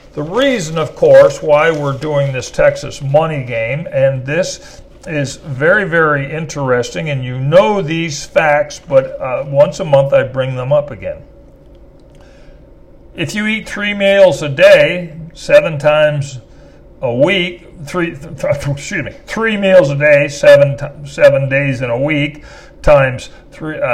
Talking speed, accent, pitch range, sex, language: 150 wpm, American, 140-195 Hz, male, English